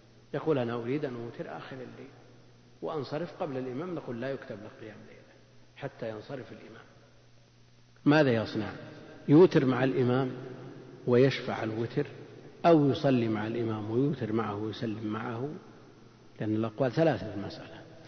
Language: Arabic